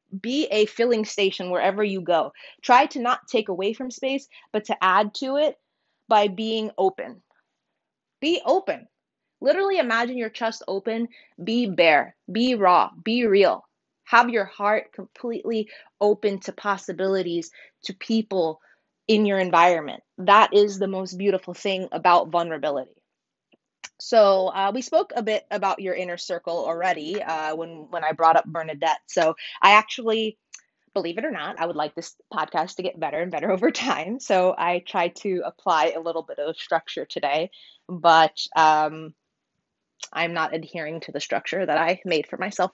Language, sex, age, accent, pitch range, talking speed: English, female, 20-39, American, 170-225 Hz, 165 wpm